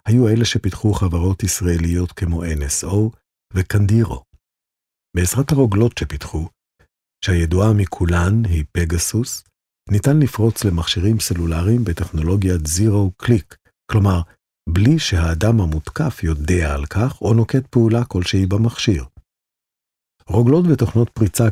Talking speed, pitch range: 100 wpm, 85-115 Hz